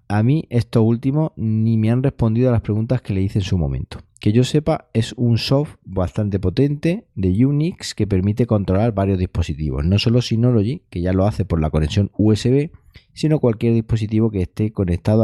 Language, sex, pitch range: Spanish, male, 95-120 Hz